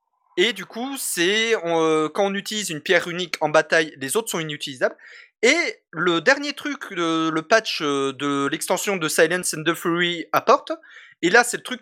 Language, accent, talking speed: French, French, 200 wpm